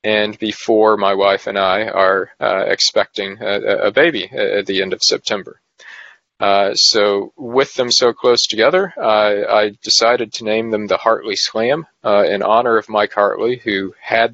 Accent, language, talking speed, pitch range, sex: American, English, 170 wpm, 100-115 Hz, male